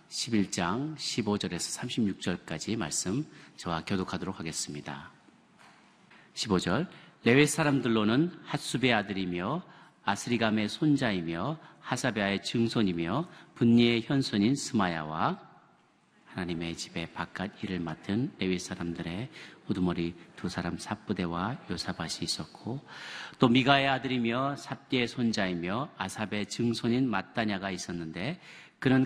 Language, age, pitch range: Korean, 40-59, 90-130 Hz